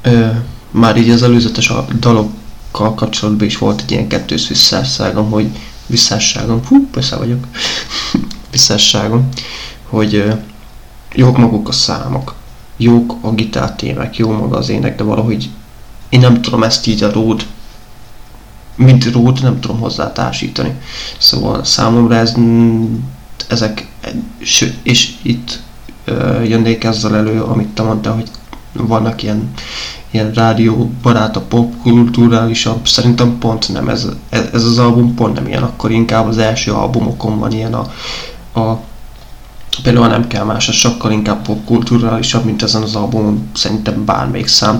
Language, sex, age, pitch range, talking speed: Hungarian, male, 20-39, 110-120 Hz, 140 wpm